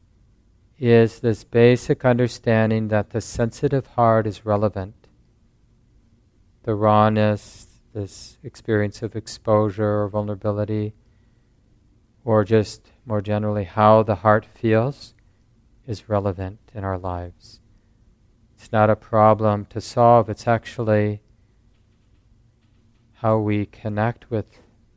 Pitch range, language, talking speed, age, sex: 105-115 Hz, English, 105 wpm, 40-59, male